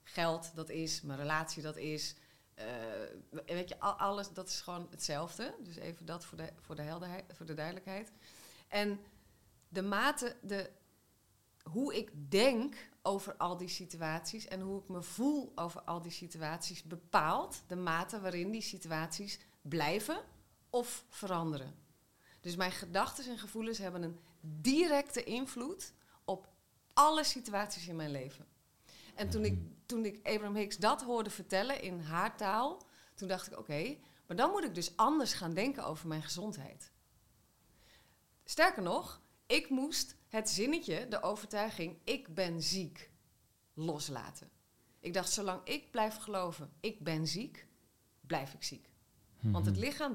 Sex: female